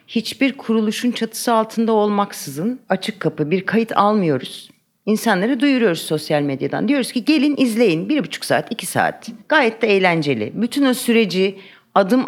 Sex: female